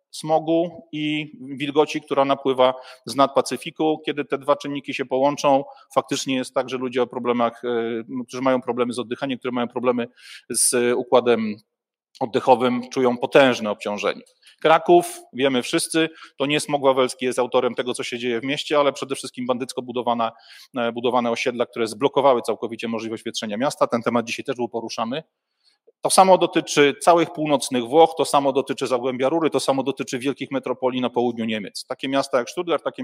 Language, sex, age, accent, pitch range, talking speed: Polish, male, 40-59, native, 120-145 Hz, 165 wpm